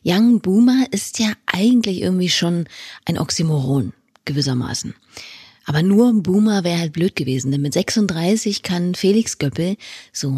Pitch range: 155-205 Hz